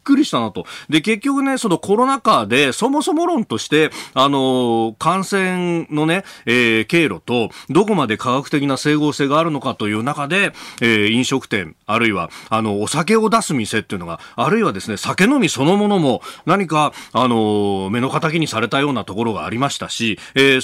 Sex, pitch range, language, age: male, 115-185 Hz, Japanese, 40-59